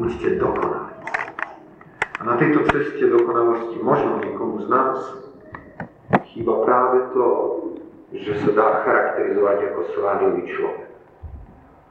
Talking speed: 95 wpm